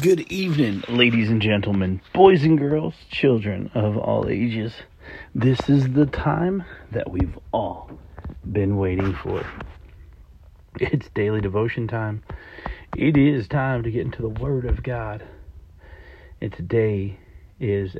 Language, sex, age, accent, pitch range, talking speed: English, male, 40-59, American, 85-120 Hz, 130 wpm